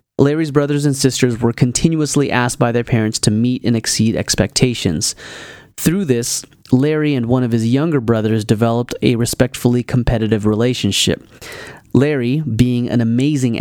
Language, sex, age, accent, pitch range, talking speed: English, male, 30-49, American, 110-135 Hz, 145 wpm